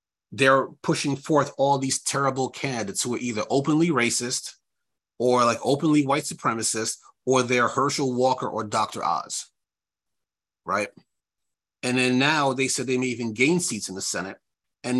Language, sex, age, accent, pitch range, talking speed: English, male, 30-49, American, 125-145 Hz, 155 wpm